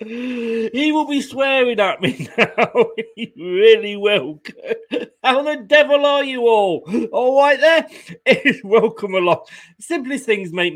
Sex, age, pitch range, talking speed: male, 40-59, 135-205 Hz, 140 wpm